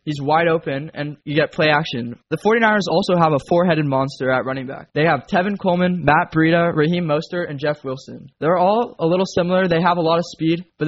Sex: male